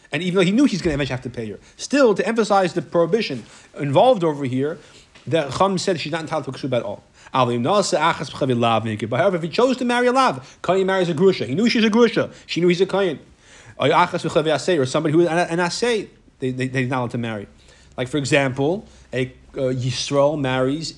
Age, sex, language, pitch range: 30-49, male, English, 125-165 Hz